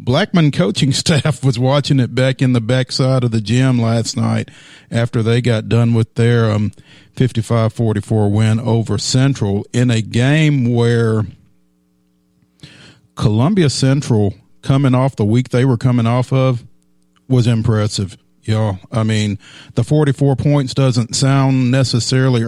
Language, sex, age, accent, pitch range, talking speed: English, male, 40-59, American, 105-130 Hz, 140 wpm